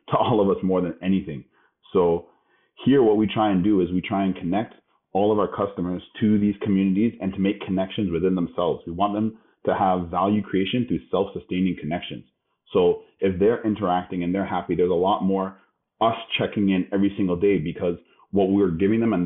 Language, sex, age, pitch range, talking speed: English, male, 30-49, 90-105 Hz, 205 wpm